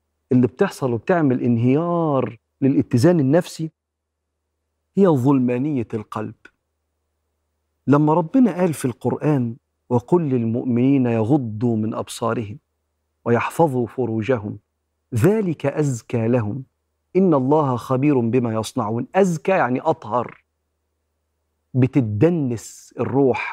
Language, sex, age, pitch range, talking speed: Arabic, male, 50-69, 110-155 Hz, 85 wpm